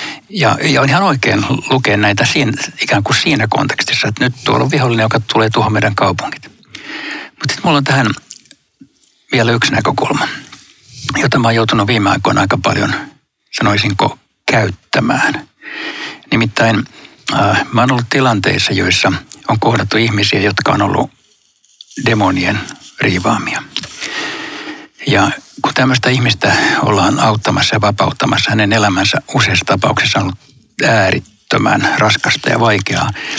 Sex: male